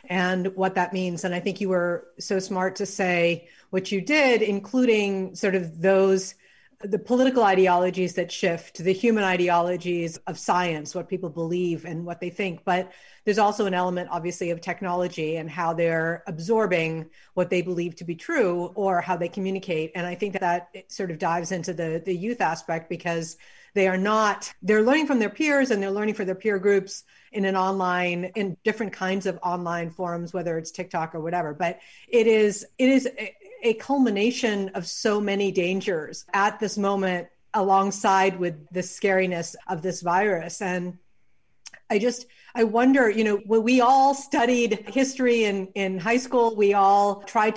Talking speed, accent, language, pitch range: 180 wpm, American, English, 180-210 Hz